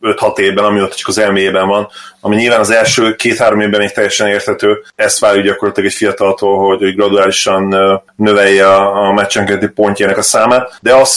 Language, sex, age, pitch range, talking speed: Hungarian, male, 30-49, 100-110 Hz, 170 wpm